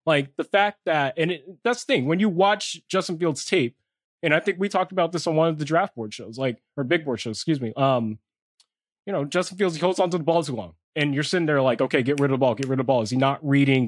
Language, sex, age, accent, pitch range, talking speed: English, male, 20-39, American, 130-160 Hz, 290 wpm